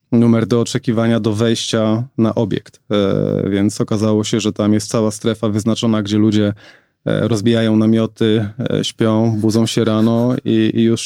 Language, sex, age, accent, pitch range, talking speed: Polish, male, 20-39, native, 105-115 Hz, 140 wpm